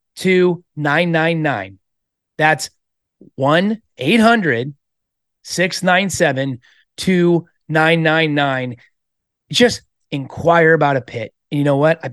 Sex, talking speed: male, 125 wpm